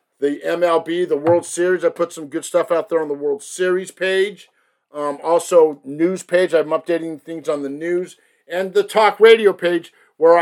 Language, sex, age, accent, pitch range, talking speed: English, male, 50-69, American, 165-205 Hz, 190 wpm